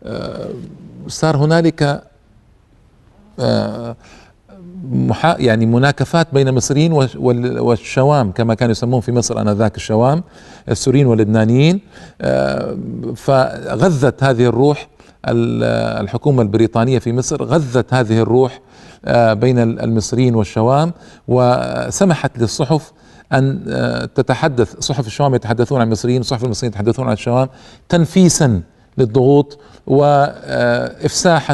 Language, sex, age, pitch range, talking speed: Arabic, male, 50-69, 115-145 Hz, 100 wpm